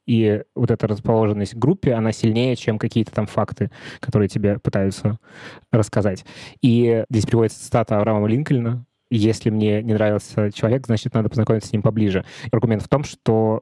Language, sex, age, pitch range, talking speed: Russian, male, 20-39, 105-120 Hz, 165 wpm